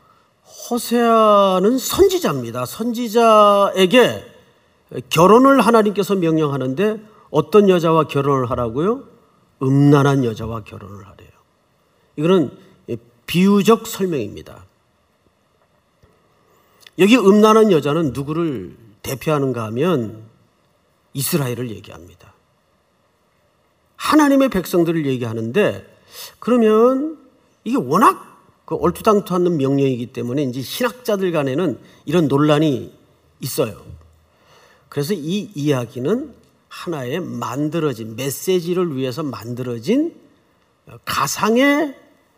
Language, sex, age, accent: Korean, male, 40-59, native